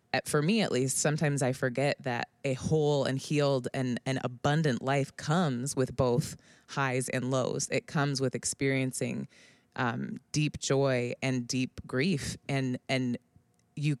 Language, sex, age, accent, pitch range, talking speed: English, female, 20-39, American, 125-145 Hz, 150 wpm